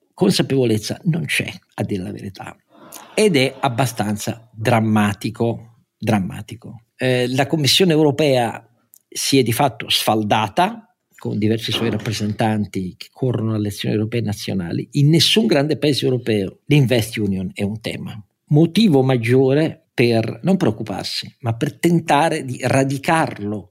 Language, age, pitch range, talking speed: Italian, 50-69, 110-140 Hz, 130 wpm